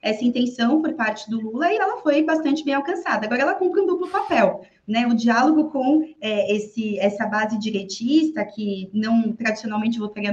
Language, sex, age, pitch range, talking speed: Portuguese, female, 20-39, 210-290 Hz, 180 wpm